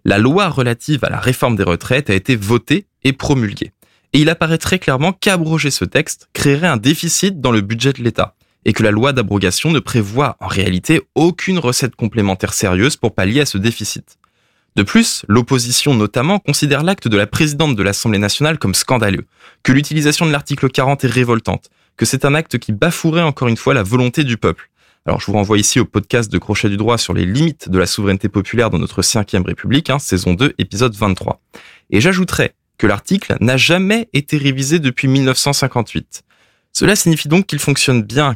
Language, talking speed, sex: French, 195 wpm, male